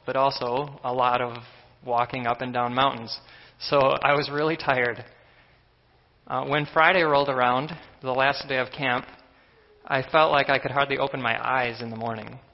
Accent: American